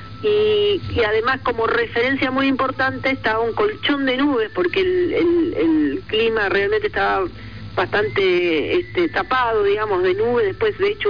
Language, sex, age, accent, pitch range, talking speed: Spanish, female, 40-59, Argentinian, 250-410 Hz, 150 wpm